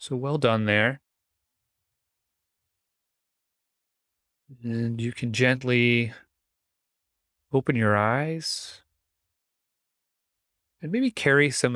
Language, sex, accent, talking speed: English, male, American, 75 wpm